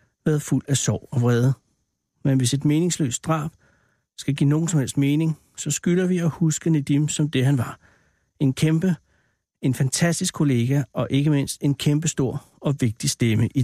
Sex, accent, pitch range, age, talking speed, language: male, native, 130-155 Hz, 60-79, 180 wpm, Danish